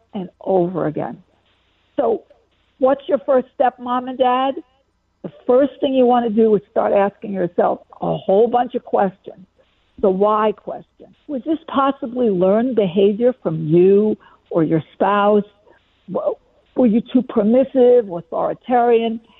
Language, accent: English, American